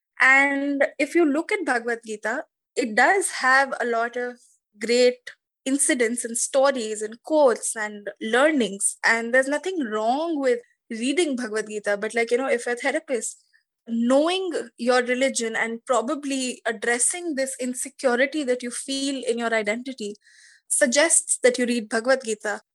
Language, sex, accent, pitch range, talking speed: English, female, Indian, 235-285 Hz, 150 wpm